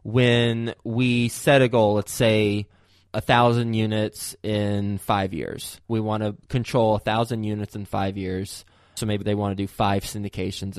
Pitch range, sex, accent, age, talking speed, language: 105-120 Hz, male, American, 20-39, 160 wpm, English